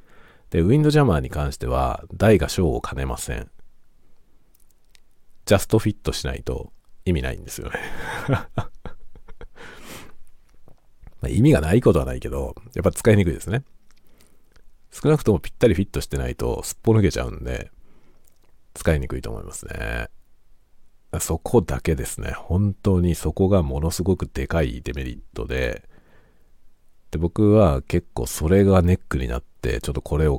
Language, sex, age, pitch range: Japanese, male, 50-69, 70-95 Hz